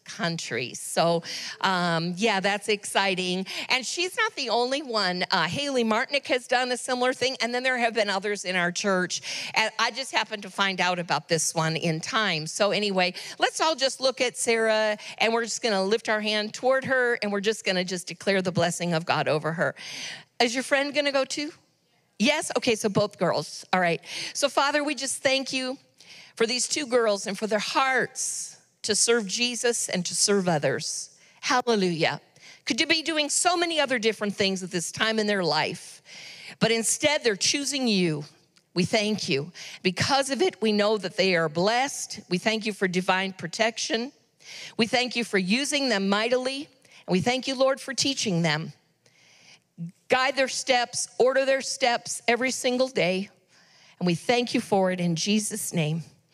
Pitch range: 180-255 Hz